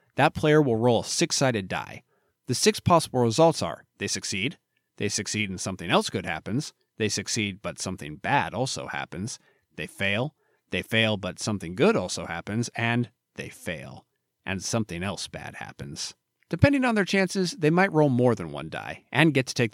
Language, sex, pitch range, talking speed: English, male, 95-140 Hz, 180 wpm